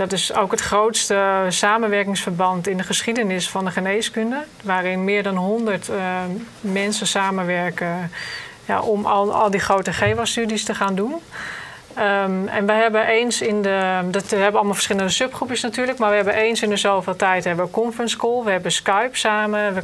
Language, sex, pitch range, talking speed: Dutch, female, 190-220 Hz, 185 wpm